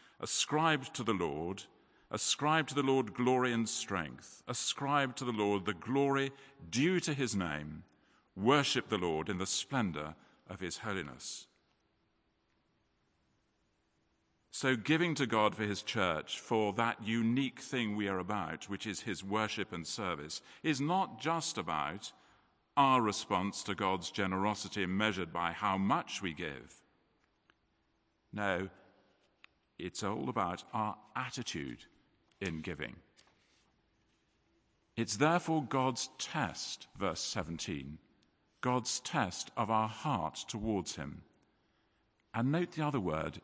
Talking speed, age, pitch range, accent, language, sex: 125 wpm, 50-69, 90-130 Hz, British, English, male